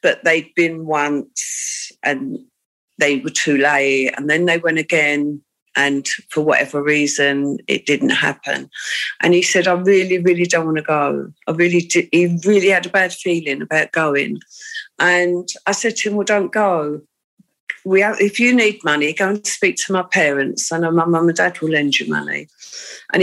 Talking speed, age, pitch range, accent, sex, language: 185 wpm, 50-69, 155-205 Hz, British, female, English